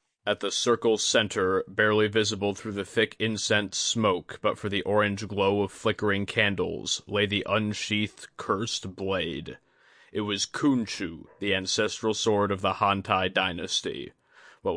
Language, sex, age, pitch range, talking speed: English, male, 20-39, 100-110 Hz, 140 wpm